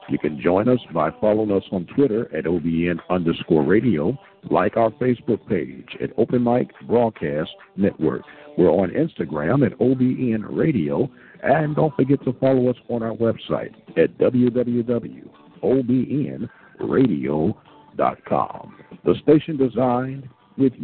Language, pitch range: English, 110-135 Hz